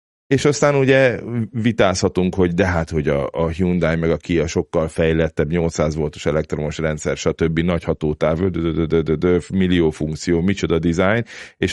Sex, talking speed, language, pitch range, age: male, 150 wpm, Hungarian, 80-95 Hz, 30-49